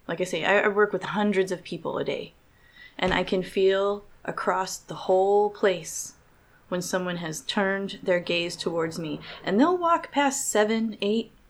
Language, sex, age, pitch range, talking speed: English, female, 20-39, 175-205 Hz, 170 wpm